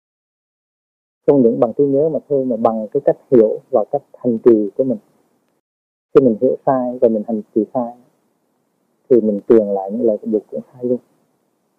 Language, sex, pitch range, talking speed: Vietnamese, male, 110-135 Hz, 195 wpm